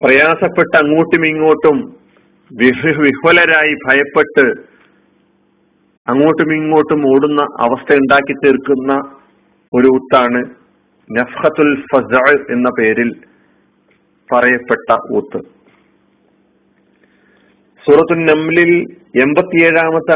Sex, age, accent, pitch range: male, 50-69, native, 130-160 Hz